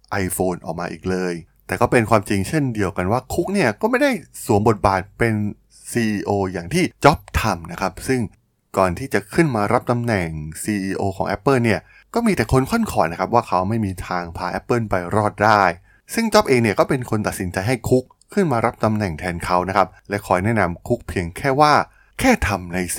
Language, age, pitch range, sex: Thai, 20-39, 95-120 Hz, male